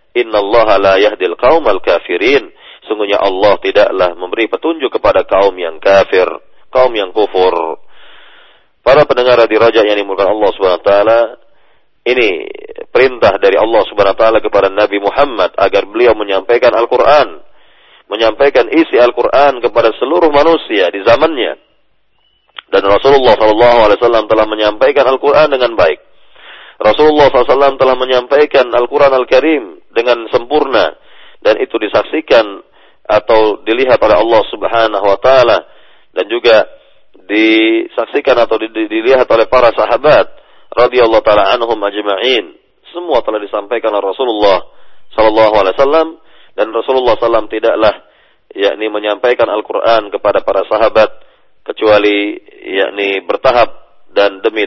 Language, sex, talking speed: Indonesian, male, 125 wpm